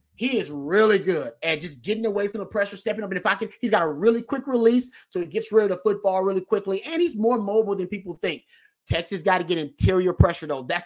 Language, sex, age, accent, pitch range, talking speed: English, male, 30-49, American, 165-210 Hz, 255 wpm